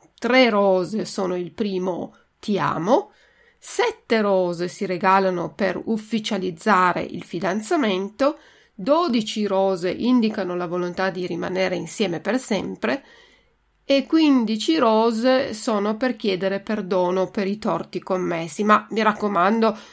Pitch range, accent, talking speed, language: 185-240 Hz, native, 115 wpm, Italian